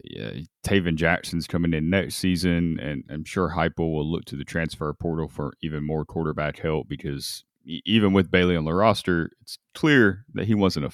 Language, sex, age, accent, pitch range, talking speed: English, male, 30-49, American, 75-100 Hz, 185 wpm